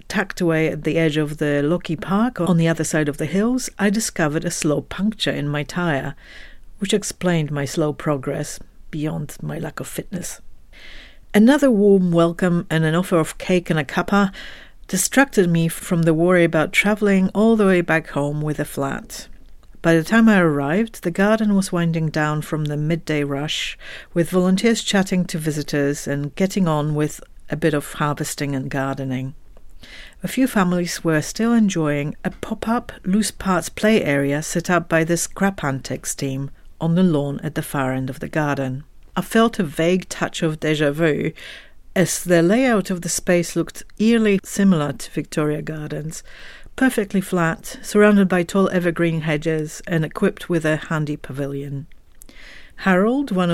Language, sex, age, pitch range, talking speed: English, female, 60-79, 150-190 Hz, 170 wpm